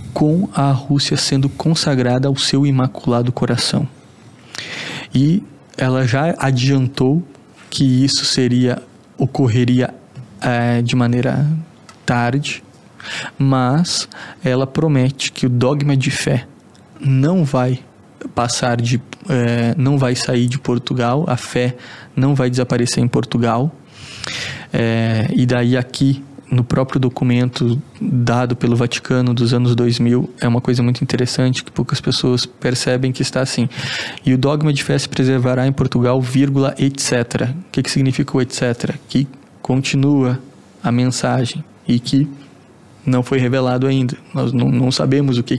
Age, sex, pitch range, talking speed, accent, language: 20-39, male, 125-140 Hz, 135 wpm, Brazilian, Portuguese